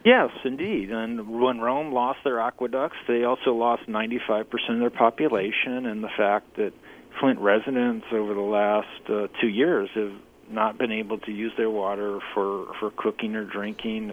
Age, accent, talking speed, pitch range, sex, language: 40-59, American, 175 wpm, 105-120 Hz, male, English